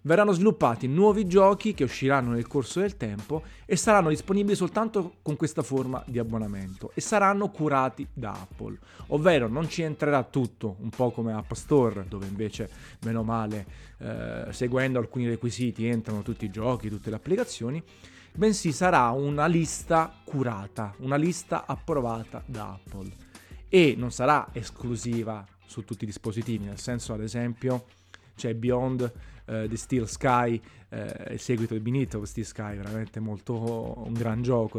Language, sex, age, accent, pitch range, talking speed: Italian, male, 30-49, native, 110-135 Hz, 150 wpm